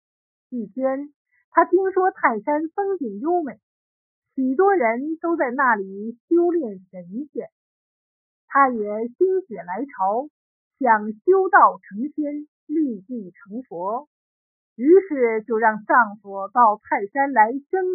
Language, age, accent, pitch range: Chinese, 50-69, native, 225-335 Hz